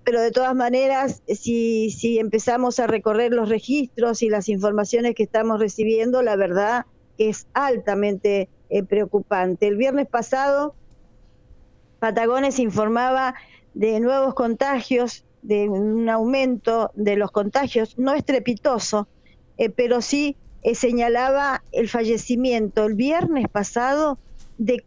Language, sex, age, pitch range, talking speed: Spanish, female, 50-69, 215-255 Hz, 120 wpm